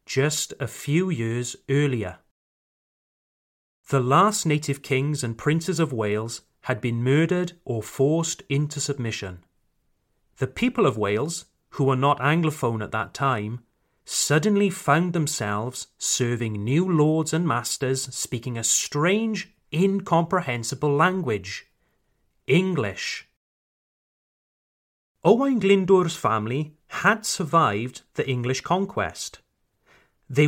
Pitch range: 120-175 Hz